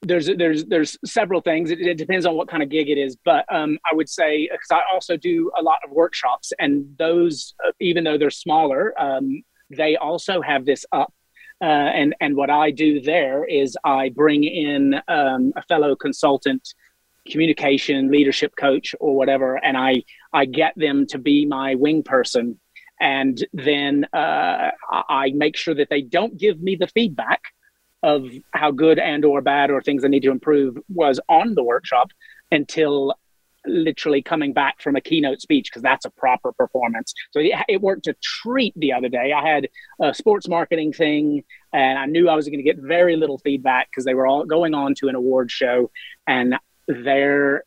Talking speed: 190 wpm